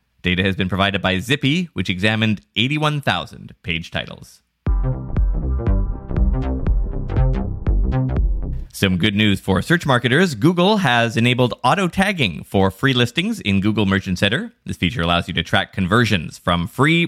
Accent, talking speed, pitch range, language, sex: American, 130 wpm, 90-130 Hz, English, male